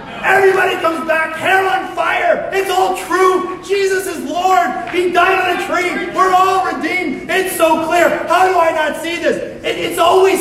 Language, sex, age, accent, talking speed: English, male, 40-59, American, 180 wpm